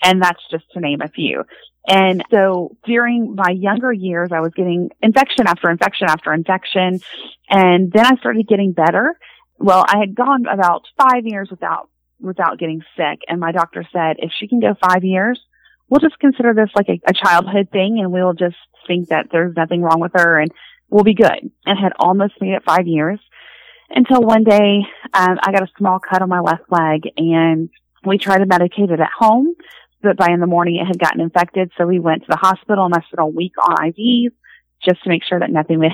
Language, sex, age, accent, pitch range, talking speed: English, female, 30-49, American, 170-205 Hz, 215 wpm